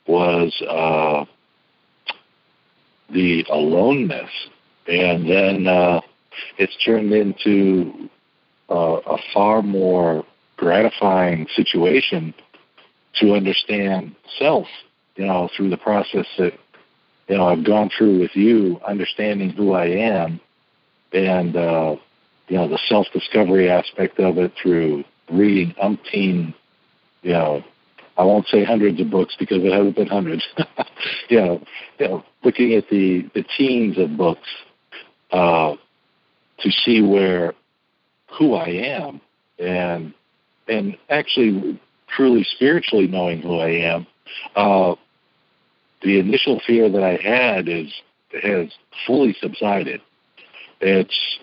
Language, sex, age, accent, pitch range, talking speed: English, male, 60-79, American, 85-100 Hz, 120 wpm